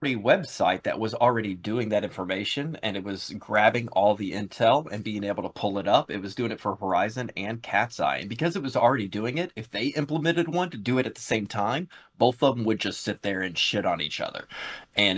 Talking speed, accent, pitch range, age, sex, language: 245 wpm, American, 95-120 Hz, 30-49, male, English